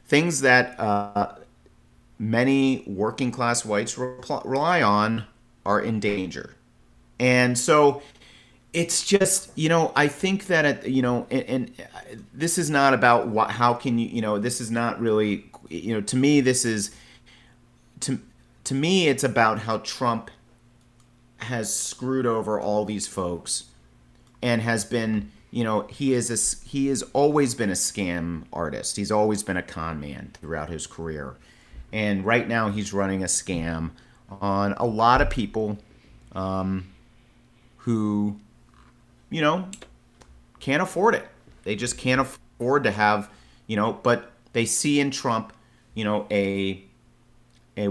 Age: 40-59